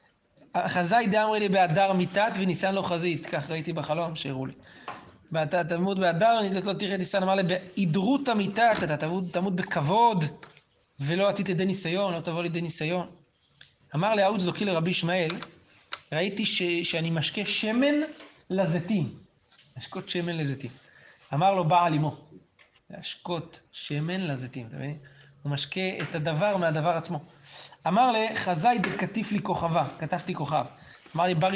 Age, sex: 30-49, male